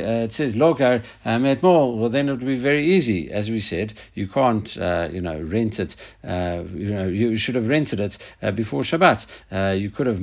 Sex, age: male, 60-79